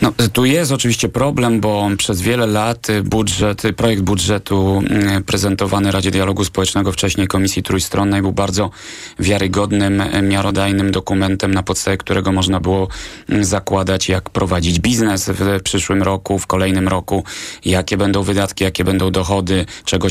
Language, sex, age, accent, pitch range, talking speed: Polish, male, 30-49, native, 95-105 Hz, 135 wpm